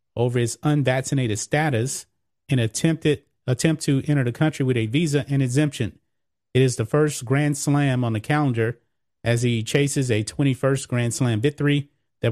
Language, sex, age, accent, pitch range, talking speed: English, male, 30-49, American, 120-145 Hz, 165 wpm